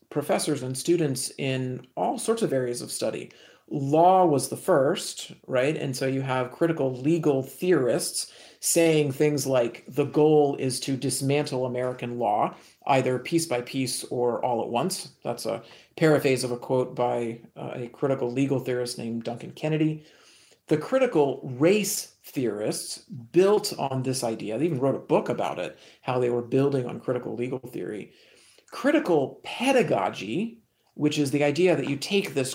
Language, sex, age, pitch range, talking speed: English, male, 50-69, 130-165 Hz, 160 wpm